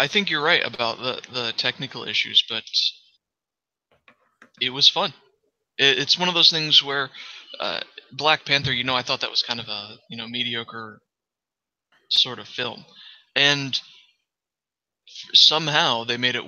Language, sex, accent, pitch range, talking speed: English, male, American, 120-135 Hz, 155 wpm